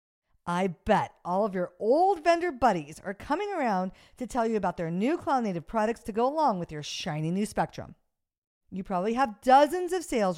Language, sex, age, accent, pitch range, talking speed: English, female, 50-69, American, 170-255 Hz, 190 wpm